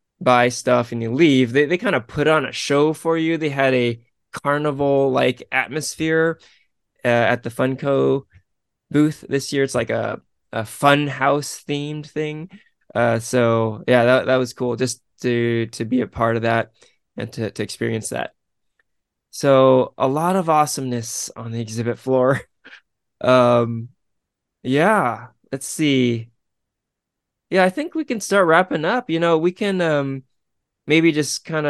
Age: 20-39